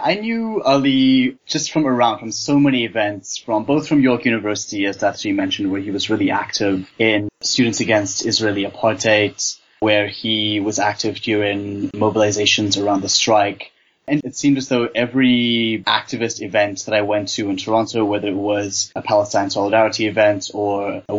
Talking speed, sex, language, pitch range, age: 170 wpm, male, English, 105-130 Hz, 20-39